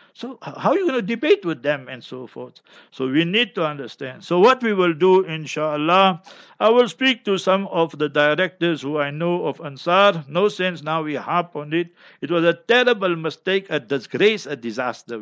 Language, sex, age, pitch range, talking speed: English, male, 50-69, 155-200 Hz, 205 wpm